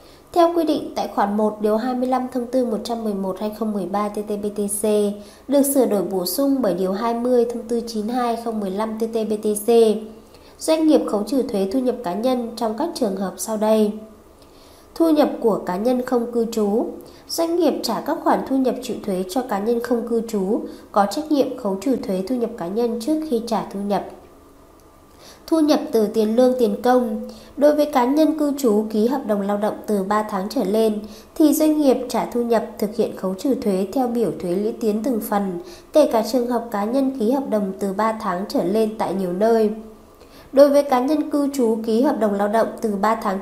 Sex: female